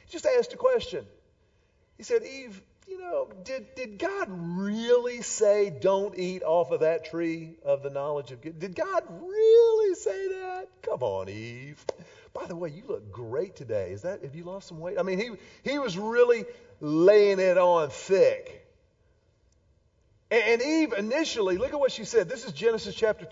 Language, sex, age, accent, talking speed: English, male, 40-59, American, 180 wpm